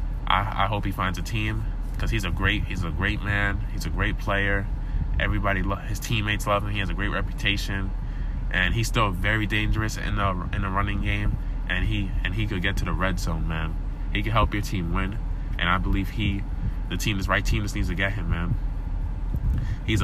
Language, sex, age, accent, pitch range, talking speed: English, male, 20-39, American, 90-105 Hz, 215 wpm